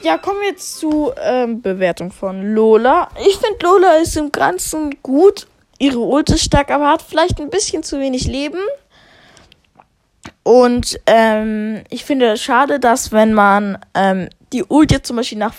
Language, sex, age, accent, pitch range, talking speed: German, female, 20-39, German, 220-290 Hz, 175 wpm